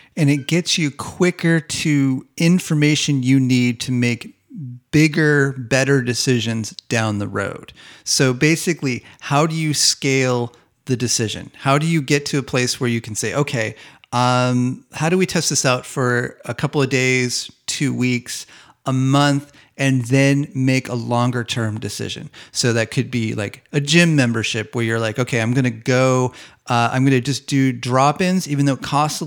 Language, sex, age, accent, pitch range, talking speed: English, male, 30-49, American, 120-145 Hz, 180 wpm